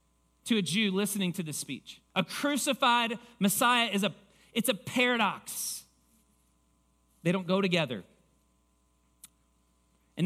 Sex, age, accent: male, 40-59, American